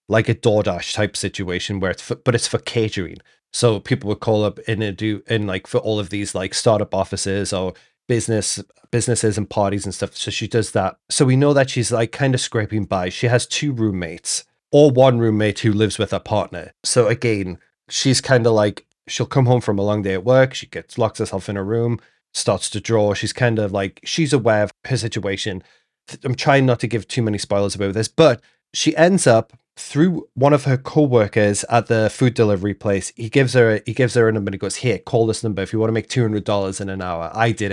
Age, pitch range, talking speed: 30-49, 100-120 Hz, 235 wpm